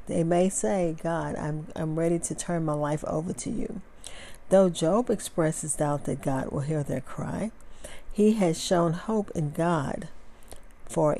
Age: 50-69